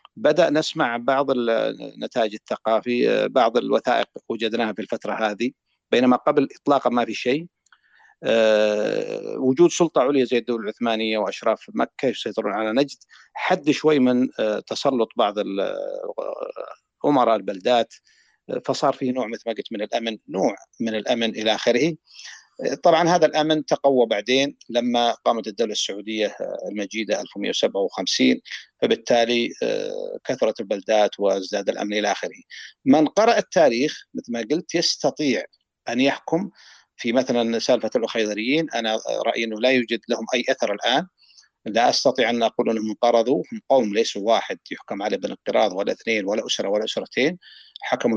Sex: male